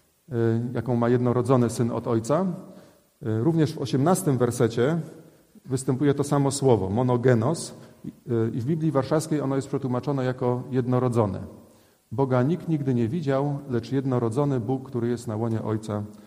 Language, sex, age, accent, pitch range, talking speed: Polish, male, 40-59, native, 115-140 Hz, 135 wpm